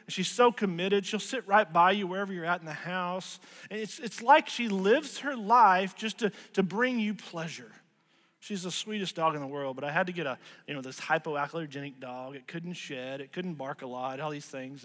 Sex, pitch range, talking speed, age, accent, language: male, 180-230 Hz, 225 wpm, 40-59, American, English